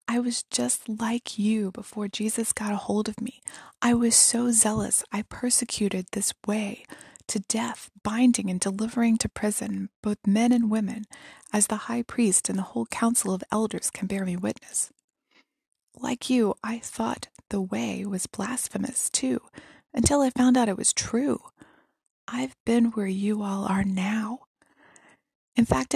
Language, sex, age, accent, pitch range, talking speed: English, female, 20-39, American, 205-240 Hz, 160 wpm